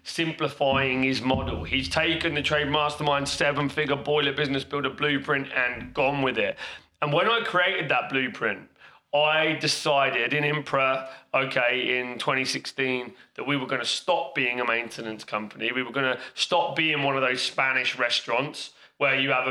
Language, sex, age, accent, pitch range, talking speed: English, male, 30-49, British, 130-145 Hz, 170 wpm